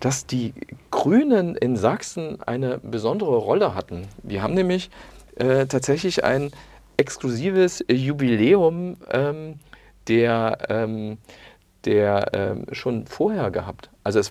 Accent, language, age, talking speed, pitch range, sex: German, German, 40-59, 110 wpm, 115-180 Hz, male